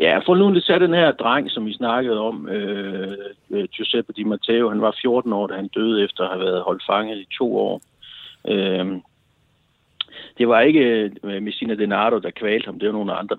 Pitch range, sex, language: 95-115 Hz, male, Danish